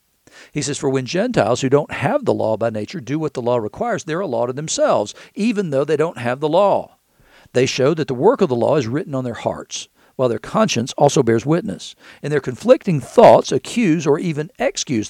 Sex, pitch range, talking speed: male, 130-165 Hz, 225 wpm